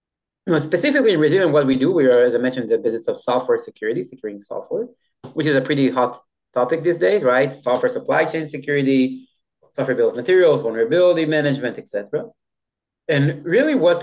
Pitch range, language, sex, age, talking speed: 130-170 Hz, English, male, 30-49, 175 wpm